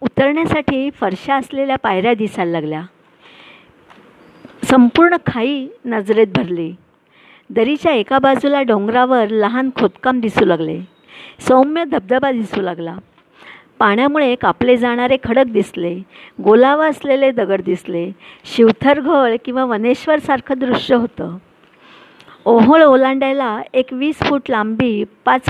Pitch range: 215-270 Hz